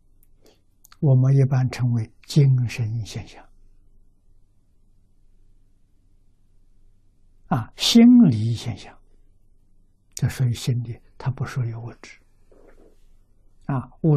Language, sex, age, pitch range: Chinese, male, 60-79, 95-125 Hz